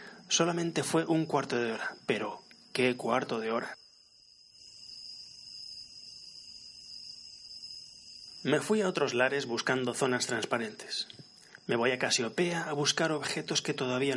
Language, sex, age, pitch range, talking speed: Spanish, male, 30-49, 125-155 Hz, 120 wpm